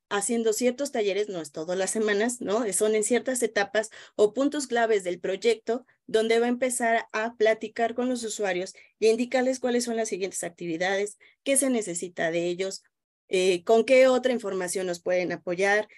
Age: 20-39